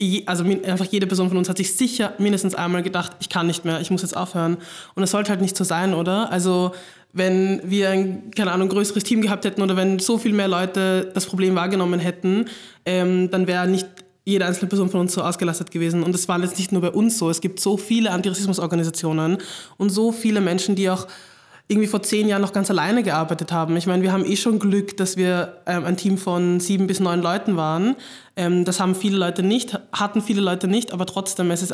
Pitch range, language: 180-200 Hz, German